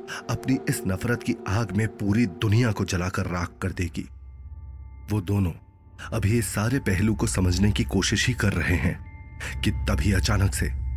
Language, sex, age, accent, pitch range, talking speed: Hindi, male, 30-49, native, 85-100 Hz, 175 wpm